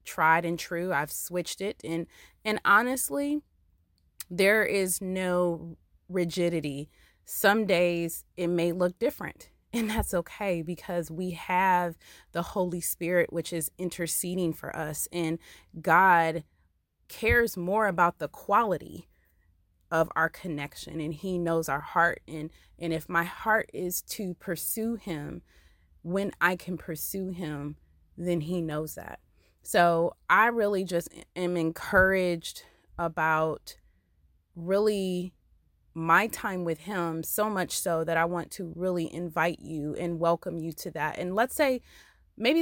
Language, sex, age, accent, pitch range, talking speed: English, female, 20-39, American, 155-185 Hz, 135 wpm